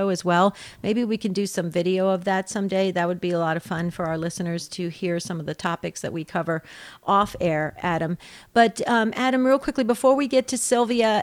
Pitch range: 195-240 Hz